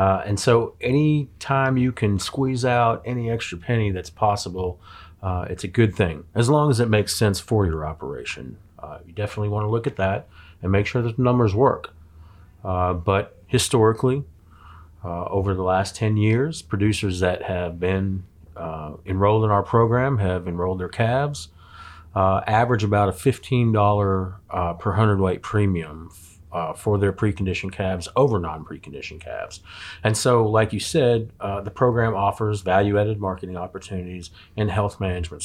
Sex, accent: male, American